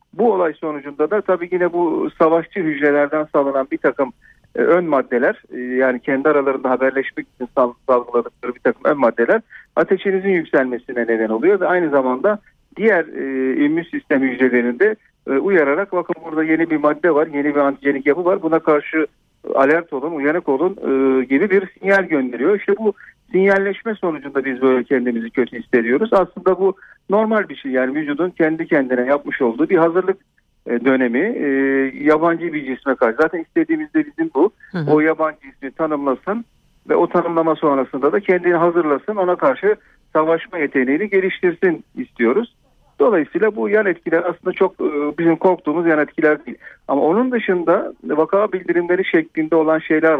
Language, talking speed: Turkish, 155 wpm